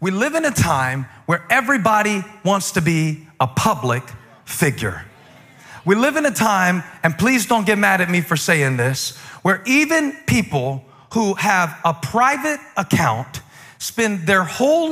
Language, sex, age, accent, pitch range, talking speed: English, male, 40-59, American, 140-215 Hz, 155 wpm